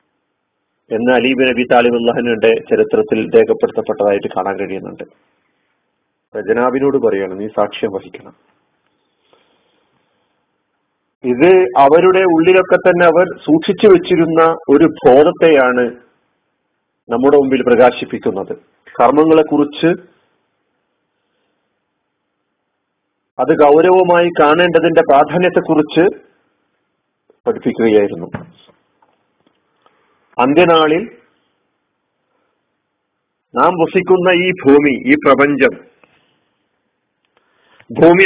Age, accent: 40-59, native